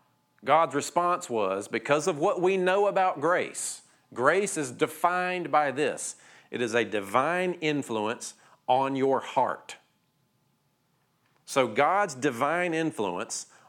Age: 40-59